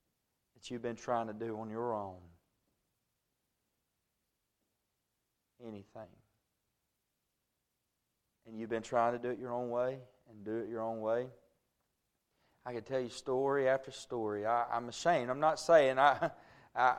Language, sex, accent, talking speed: English, male, American, 140 wpm